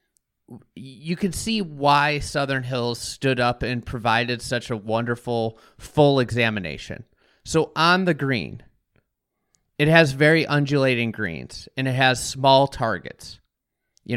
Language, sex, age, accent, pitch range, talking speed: English, male, 30-49, American, 125-160 Hz, 125 wpm